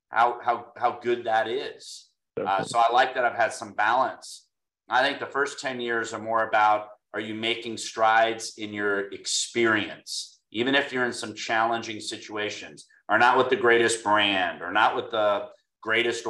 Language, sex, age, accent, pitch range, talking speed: English, male, 40-59, American, 105-125 Hz, 180 wpm